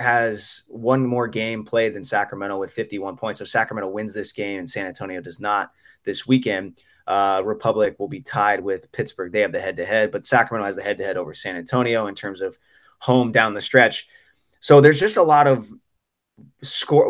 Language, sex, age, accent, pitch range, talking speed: English, male, 20-39, American, 105-125 Hz, 210 wpm